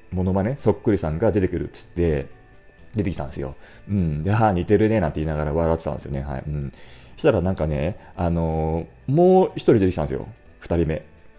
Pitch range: 80-125 Hz